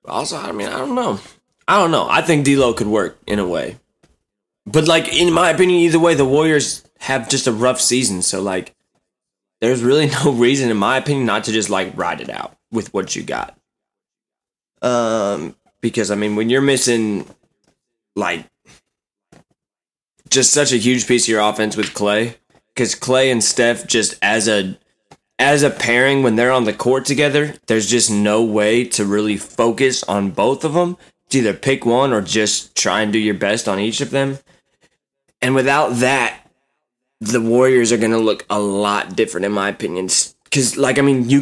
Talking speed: 190 wpm